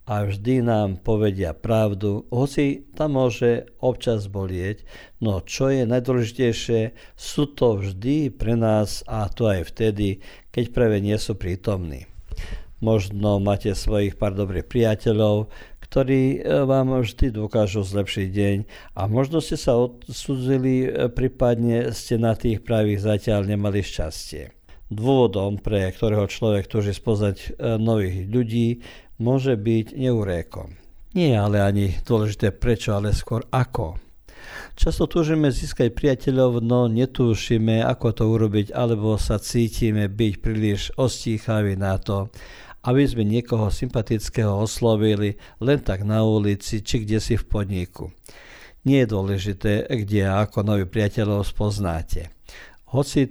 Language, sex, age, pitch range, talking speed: Croatian, male, 50-69, 100-125 Hz, 125 wpm